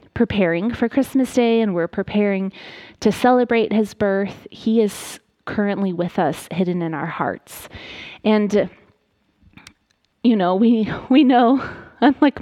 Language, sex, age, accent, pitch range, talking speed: English, female, 20-39, American, 180-225 Hz, 130 wpm